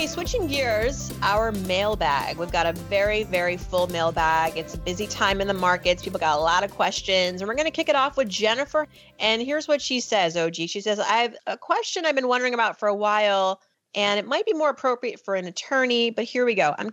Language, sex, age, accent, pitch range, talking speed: English, female, 30-49, American, 180-235 Hz, 235 wpm